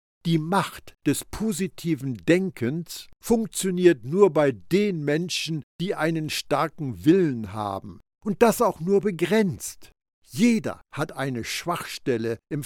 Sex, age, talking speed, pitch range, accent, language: male, 60-79, 120 wpm, 130-190 Hz, German, German